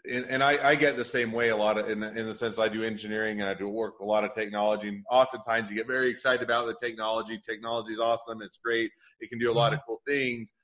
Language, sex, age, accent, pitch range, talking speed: English, male, 30-49, American, 105-125 Hz, 275 wpm